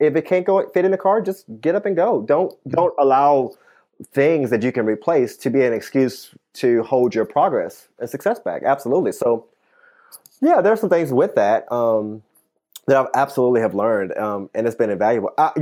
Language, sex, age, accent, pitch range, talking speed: English, male, 20-39, American, 120-165 Hz, 205 wpm